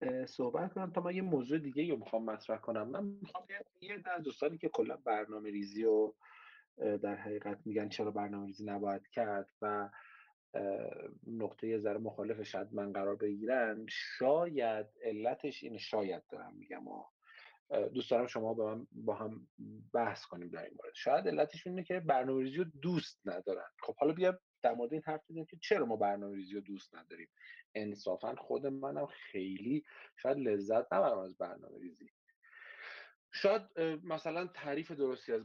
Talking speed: 150 wpm